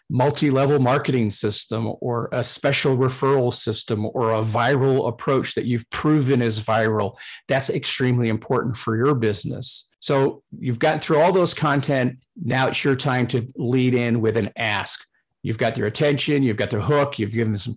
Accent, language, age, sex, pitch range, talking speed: American, English, 40-59, male, 115-135 Hz, 175 wpm